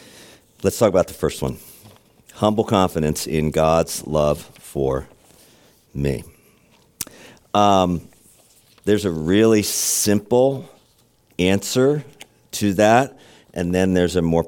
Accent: American